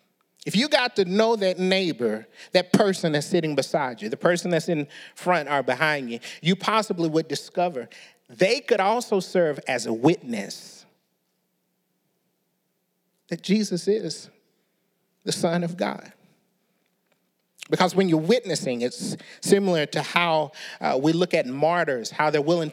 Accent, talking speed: American, 145 wpm